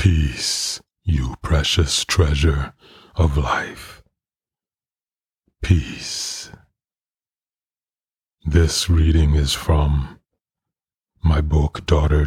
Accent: American